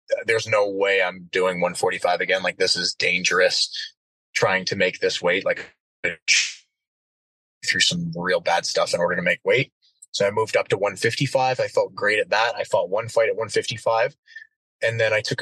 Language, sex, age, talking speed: English, male, 20-39, 185 wpm